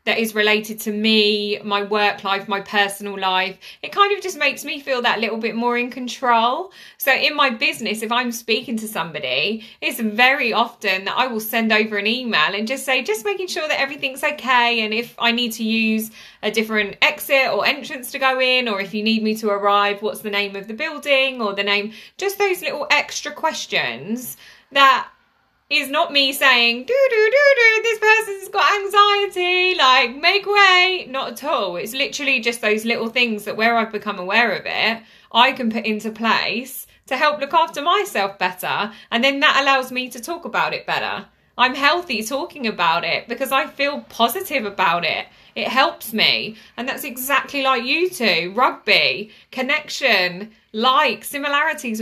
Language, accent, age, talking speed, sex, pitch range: English, British, 20-39, 190 wpm, female, 215-285 Hz